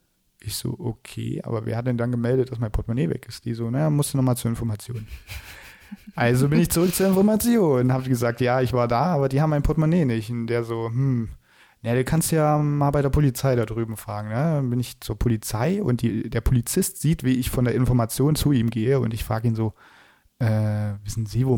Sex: male